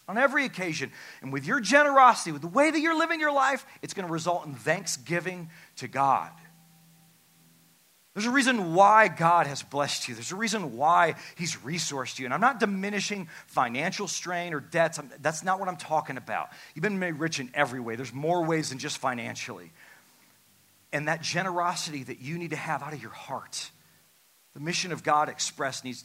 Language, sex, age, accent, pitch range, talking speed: English, male, 40-59, American, 125-170 Hz, 195 wpm